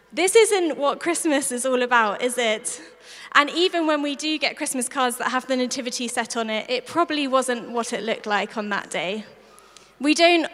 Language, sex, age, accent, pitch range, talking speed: English, female, 20-39, British, 235-280 Hz, 205 wpm